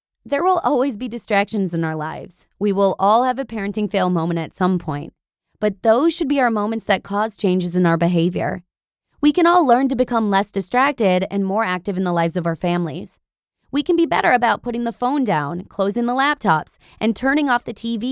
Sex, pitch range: female, 180-245 Hz